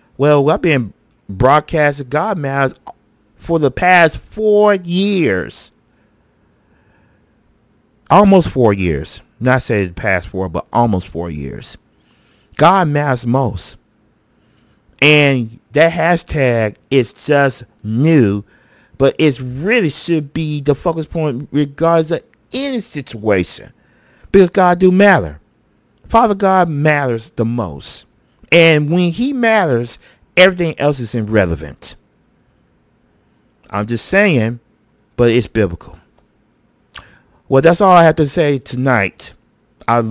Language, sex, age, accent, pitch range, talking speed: English, male, 50-69, American, 110-155 Hz, 115 wpm